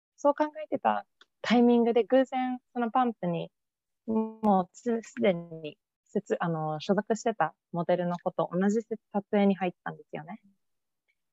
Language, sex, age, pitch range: Japanese, female, 20-39, 165-220 Hz